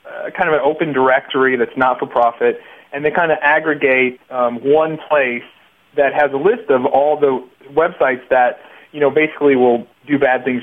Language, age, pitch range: English, 40-59, 130-155 Hz